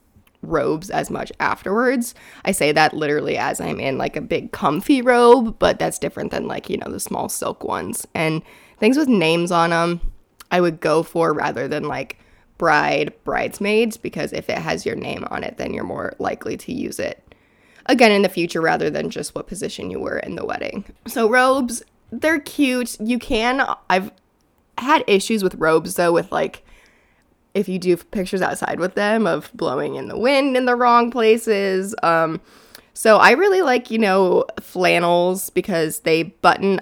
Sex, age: female, 20-39